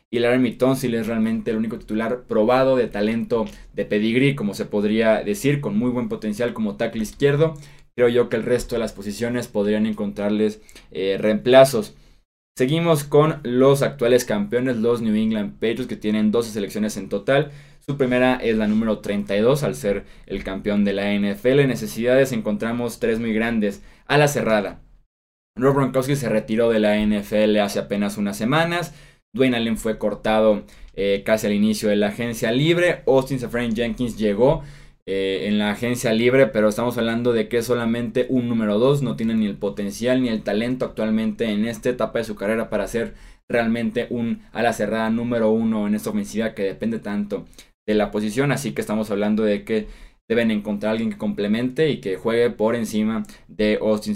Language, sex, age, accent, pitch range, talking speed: Spanish, male, 20-39, Mexican, 105-125 Hz, 185 wpm